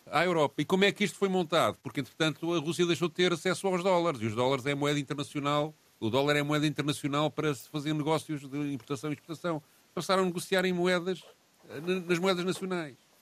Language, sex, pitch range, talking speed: Portuguese, male, 135-165 Hz, 210 wpm